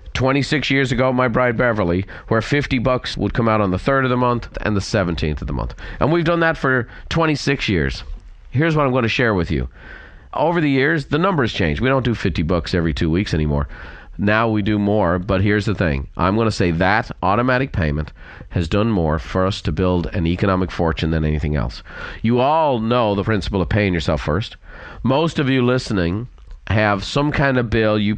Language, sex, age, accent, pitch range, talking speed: English, male, 40-59, American, 90-125 Hz, 215 wpm